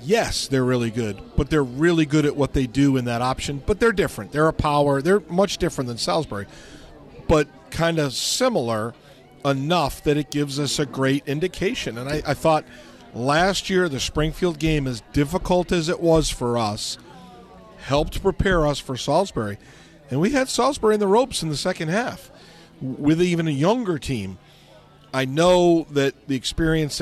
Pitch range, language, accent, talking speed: 125-160 Hz, English, American, 180 wpm